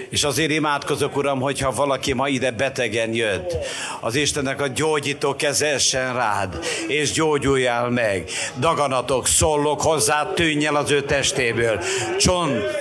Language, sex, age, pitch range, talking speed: Hungarian, male, 60-79, 150-230 Hz, 130 wpm